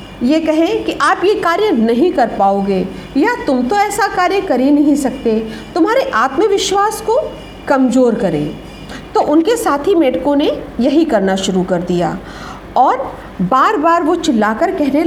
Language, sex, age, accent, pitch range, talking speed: Hindi, female, 50-69, native, 235-345 Hz, 155 wpm